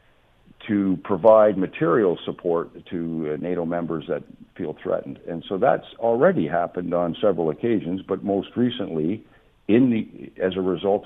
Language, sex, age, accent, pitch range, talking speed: English, male, 60-79, American, 80-95 Hz, 140 wpm